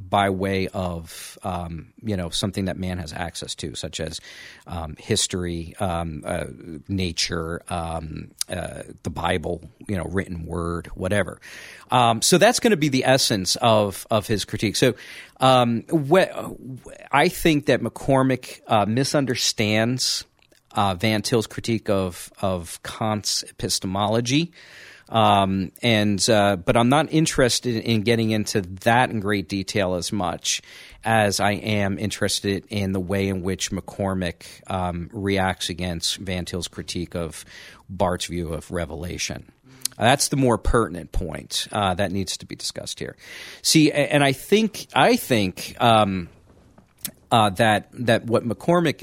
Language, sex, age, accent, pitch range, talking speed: English, male, 40-59, American, 90-120 Hz, 145 wpm